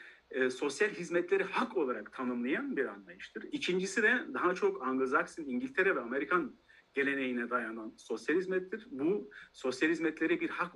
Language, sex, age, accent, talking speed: Turkish, male, 40-59, native, 140 wpm